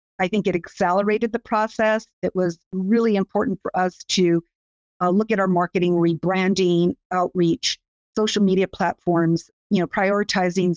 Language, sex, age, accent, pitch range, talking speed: English, female, 50-69, American, 170-195 Hz, 145 wpm